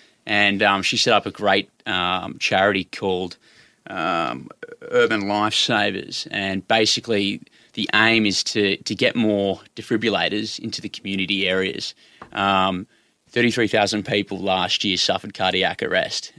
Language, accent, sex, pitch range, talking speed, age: English, Australian, male, 95-110 Hz, 130 wpm, 20-39